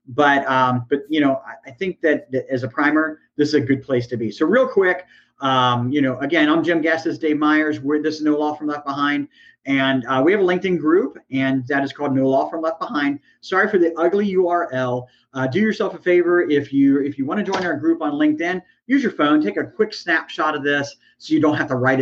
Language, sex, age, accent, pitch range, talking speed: English, male, 40-59, American, 130-160 Hz, 250 wpm